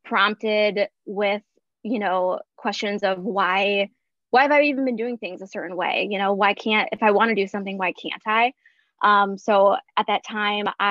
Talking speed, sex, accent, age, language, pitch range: 195 wpm, female, American, 20-39, English, 195-230 Hz